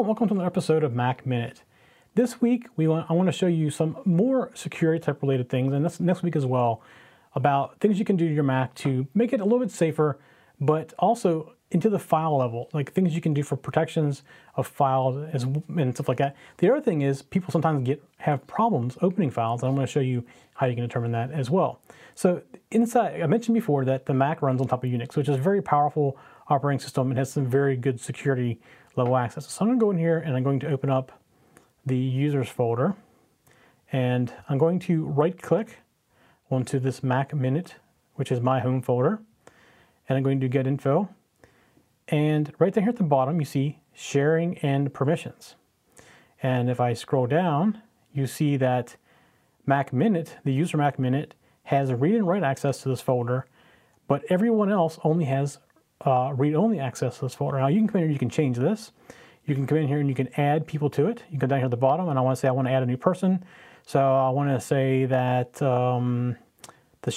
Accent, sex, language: American, male, English